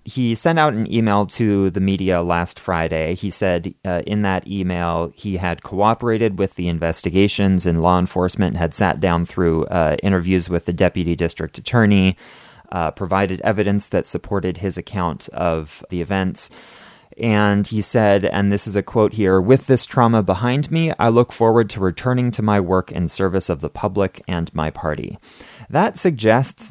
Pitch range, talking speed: 90-115 Hz, 175 wpm